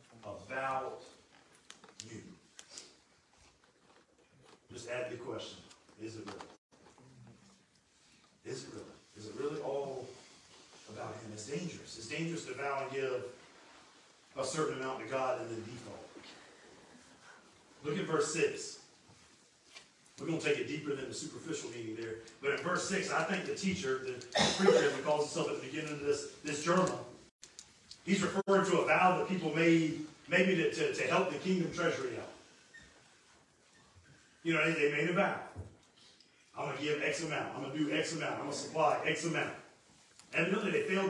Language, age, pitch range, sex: English, 40-59, 135-225 Hz, male